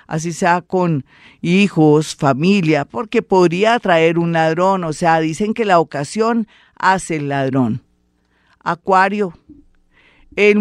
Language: Spanish